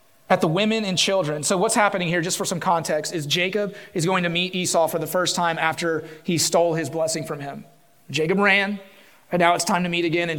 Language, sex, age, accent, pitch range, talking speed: English, male, 30-49, American, 165-210 Hz, 235 wpm